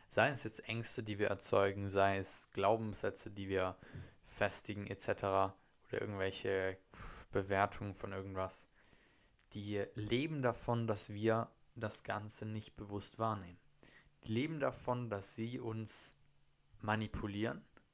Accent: German